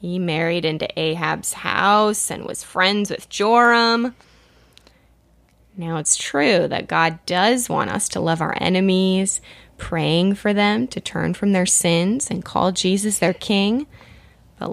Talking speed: 145 wpm